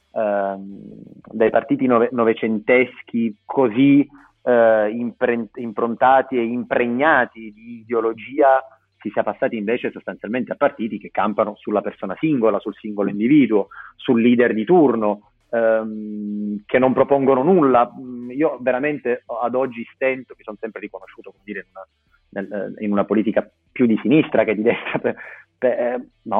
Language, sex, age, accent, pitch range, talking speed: Italian, male, 30-49, native, 105-125 Hz, 140 wpm